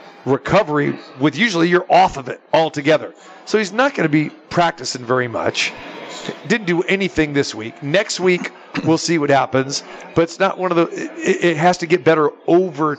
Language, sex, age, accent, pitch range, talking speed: English, male, 50-69, American, 155-205 Hz, 185 wpm